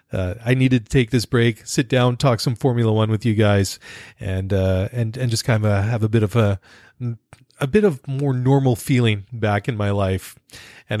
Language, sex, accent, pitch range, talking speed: English, male, American, 105-125 Hz, 215 wpm